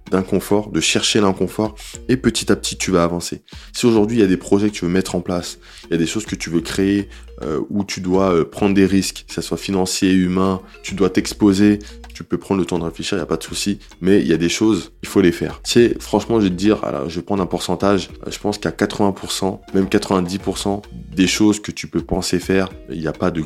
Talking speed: 265 wpm